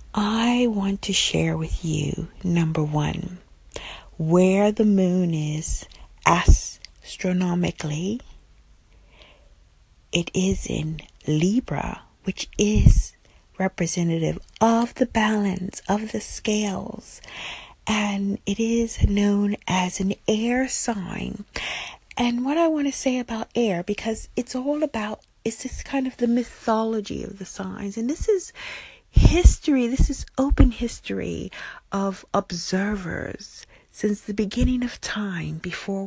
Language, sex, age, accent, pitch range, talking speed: English, female, 40-59, American, 180-235 Hz, 120 wpm